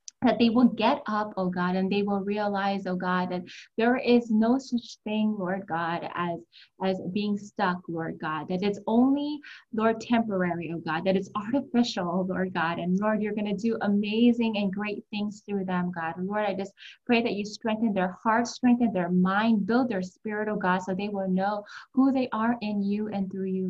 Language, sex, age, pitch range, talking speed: English, female, 20-39, 185-220 Hz, 205 wpm